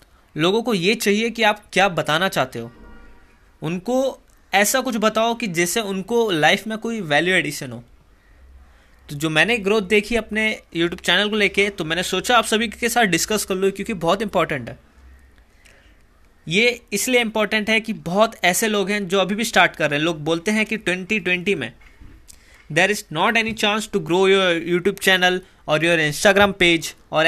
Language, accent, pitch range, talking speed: Hindi, native, 155-220 Hz, 185 wpm